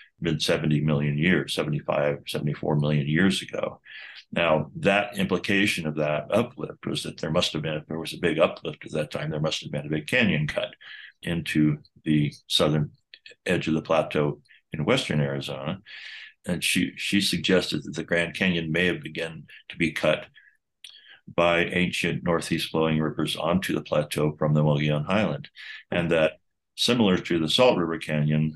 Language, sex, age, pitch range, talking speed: English, male, 60-79, 75-85 Hz, 170 wpm